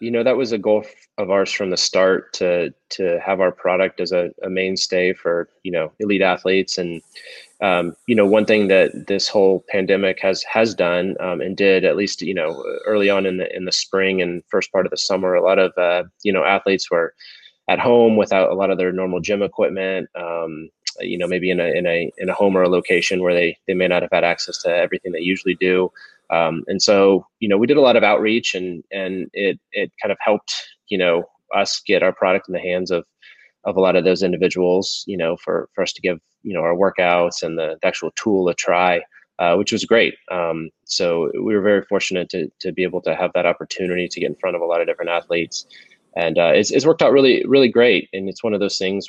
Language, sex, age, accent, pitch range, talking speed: English, male, 20-39, American, 90-100 Hz, 240 wpm